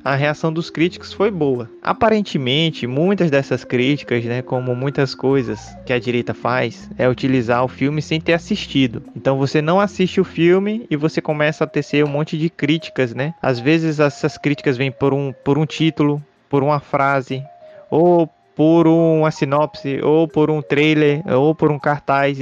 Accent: Brazilian